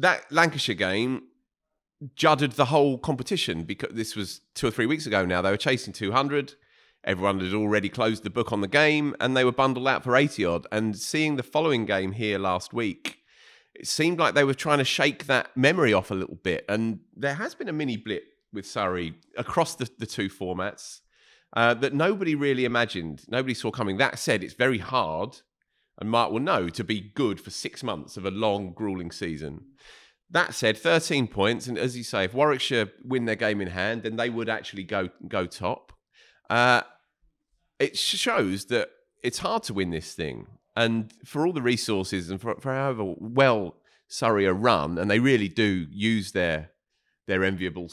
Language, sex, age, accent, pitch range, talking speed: English, male, 30-49, British, 95-135 Hz, 190 wpm